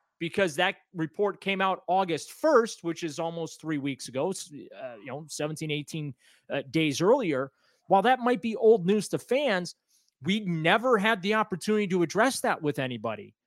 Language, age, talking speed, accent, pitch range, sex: English, 30-49, 175 wpm, American, 160-210 Hz, male